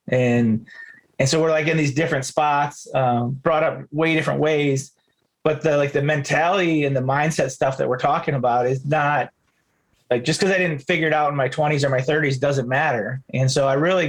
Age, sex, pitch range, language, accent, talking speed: 30-49, male, 130-160 Hz, English, American, 215 wpm